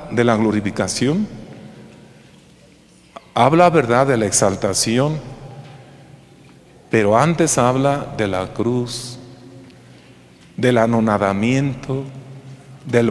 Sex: male